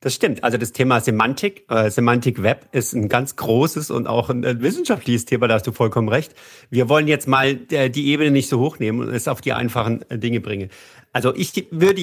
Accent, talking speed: German, 205 wpm